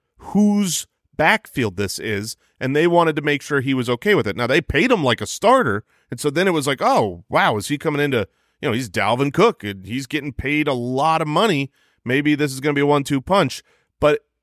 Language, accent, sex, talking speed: English, American, male, 235 wpm